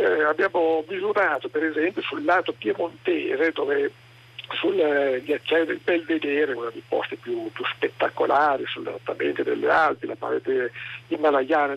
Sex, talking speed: male, 135 wpm